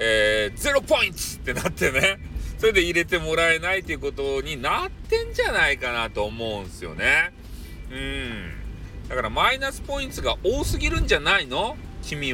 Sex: male